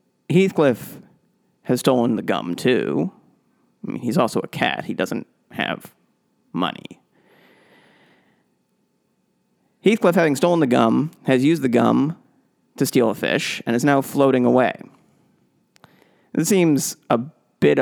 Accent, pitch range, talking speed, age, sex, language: American, 125-185 Hz, 130 wpm, 30-49, male, English